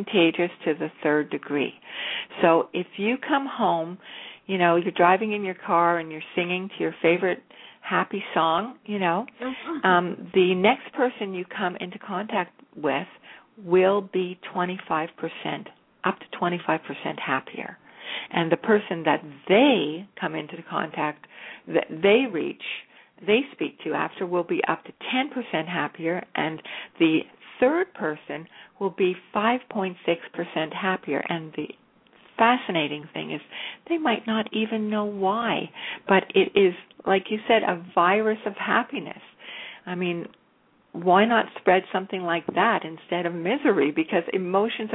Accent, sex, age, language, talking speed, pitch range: American, female, 60-79, English, 145 wpm, 170-220 Hz